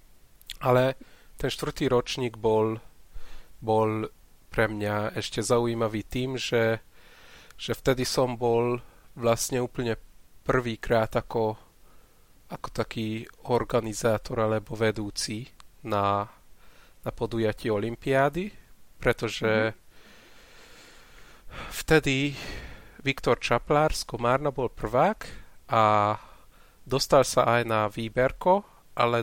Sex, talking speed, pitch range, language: male, 90 wpm, 110-125 Hz, Slovak